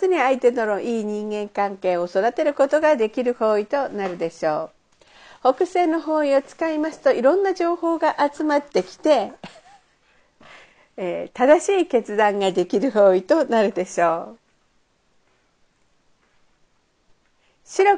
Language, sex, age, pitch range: Japanese, female, 50-69, 200-310 Hz